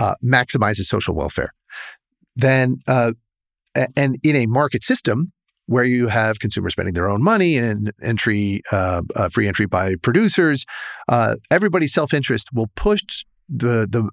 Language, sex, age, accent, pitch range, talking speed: English, male, 40-59, American, 105-135 Hz, 145 wpm